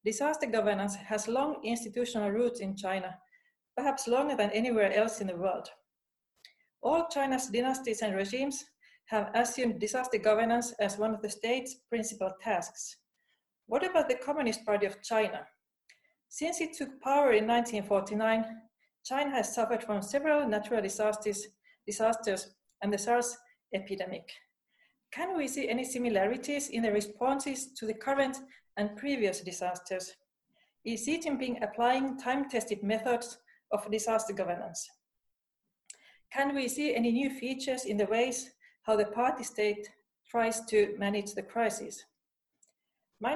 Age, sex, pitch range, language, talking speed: 40-59, female, 210-265 Hz, English, 135 wpm